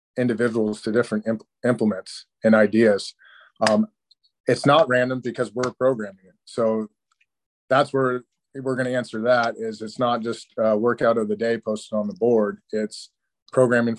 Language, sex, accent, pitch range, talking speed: English, male, American, 105-120 Hz, 165 wpm